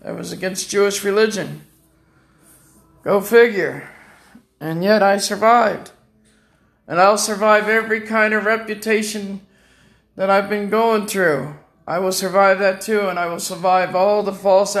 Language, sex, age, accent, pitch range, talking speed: English, male, 50-69, American, 145-205 Hz, 140 wpm